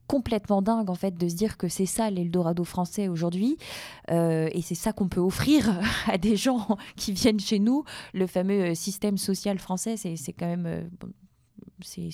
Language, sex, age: French, female, 20-39